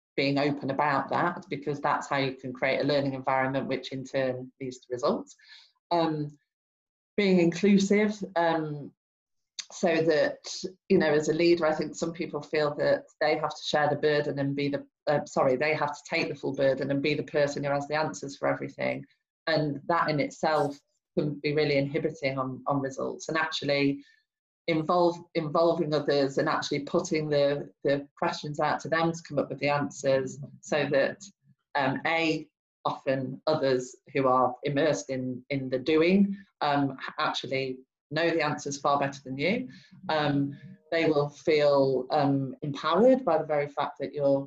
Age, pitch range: 30-49, 140-165 Hz